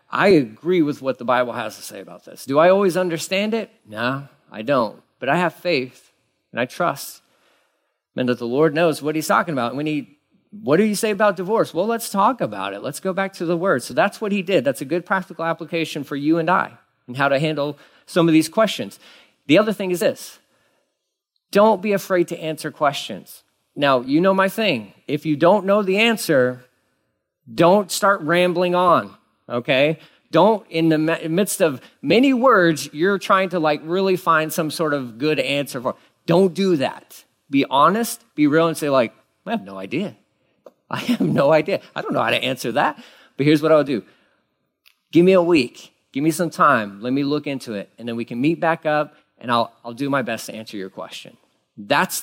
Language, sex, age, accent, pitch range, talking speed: English, male, 40-59, American, 140-195 Hz, 215 wpm